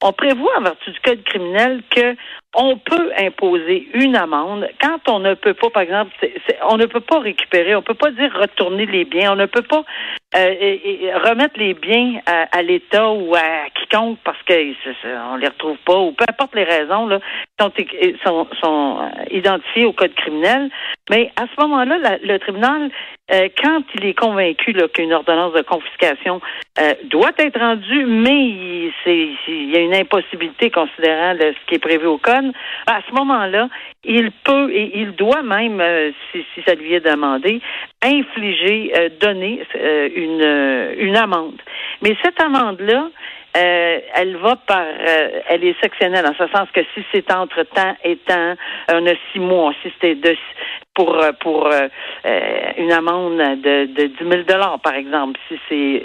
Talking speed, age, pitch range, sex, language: 185 wpm, 50-69, 170-240 Hz, female, French